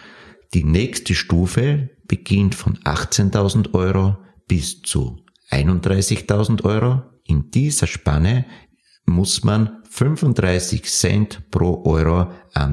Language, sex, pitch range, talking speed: German, male, 80-105 Hz, 100 wpm